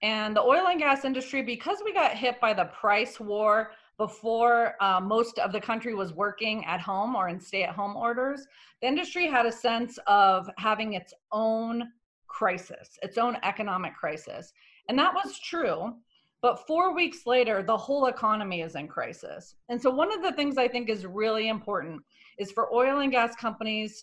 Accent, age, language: American, 30-49, English